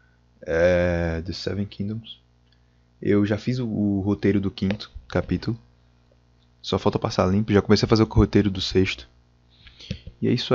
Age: 20-39